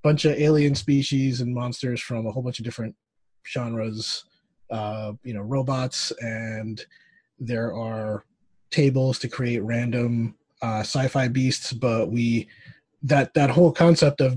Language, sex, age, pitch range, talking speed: English, male, 30-49, 110-135 Hz, 140 wpm